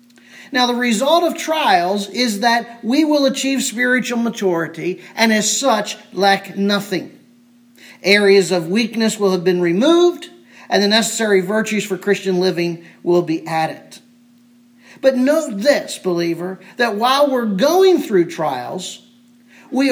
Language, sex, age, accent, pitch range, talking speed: English, male, 50-69, American, 200-260 Hz, 135 wpm